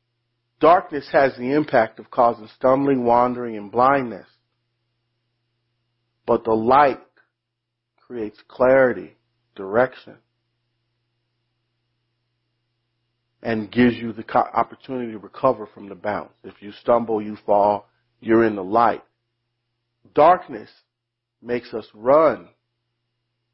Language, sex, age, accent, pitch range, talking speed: English, male, 40-59, American, 115-125 Hz, 100 wpm